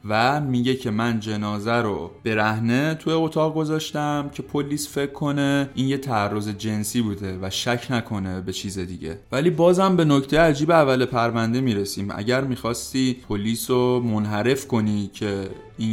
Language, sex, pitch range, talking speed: Persian, male, 105-135 Hz, 155 wpm